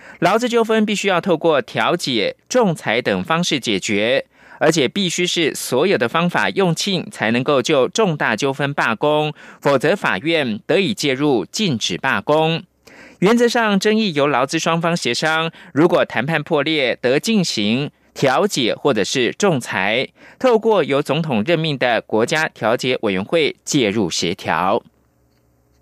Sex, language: male, German